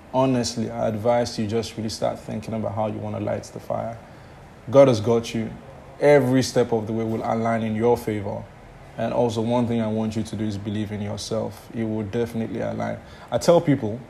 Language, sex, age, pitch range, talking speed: English, male, 20-39, 110-120 Hz, 215 wpm